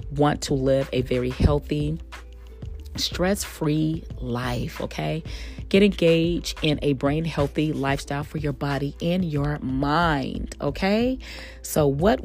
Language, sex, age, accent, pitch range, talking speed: English, female, 30-49, American, 140-210 Hz, 120 wpm